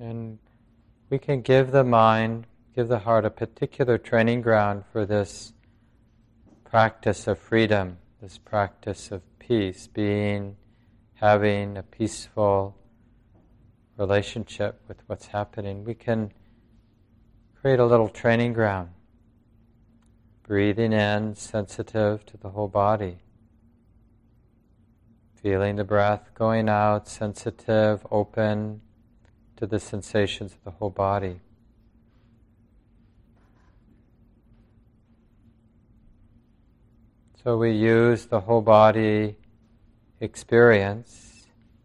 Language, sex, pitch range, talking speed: English, male, 105-115 Hz, 90 wpm